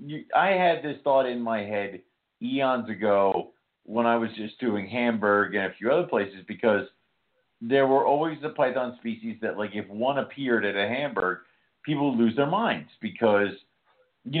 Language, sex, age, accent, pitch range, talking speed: English, male, 50-69, American, 95-125 Hz, 175 wpm